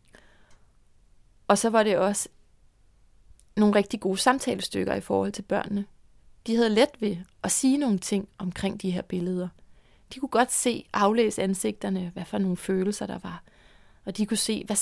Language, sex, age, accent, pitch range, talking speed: Danish, female, 30-49, native, 175-220 Hz, 170 wpm